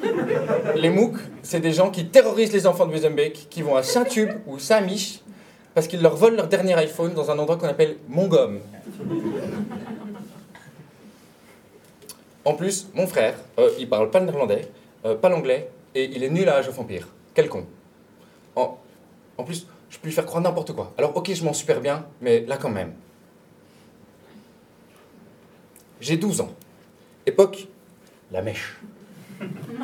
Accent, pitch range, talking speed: French, 150-210 Hz, 165 wpm